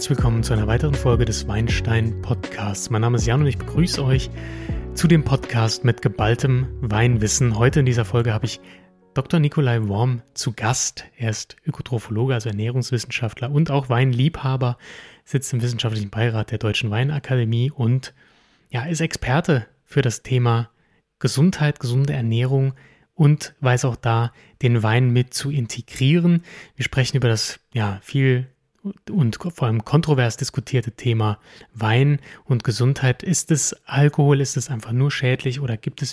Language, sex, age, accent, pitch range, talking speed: German, male, 30-49, German, 115-140 Hz, 150 wpm